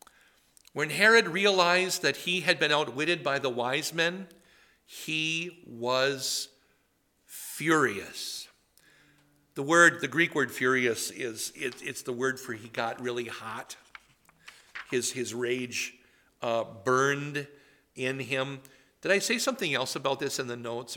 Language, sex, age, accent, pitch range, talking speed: English, male, 50-69, American, 120-170 Hz, 135 wpm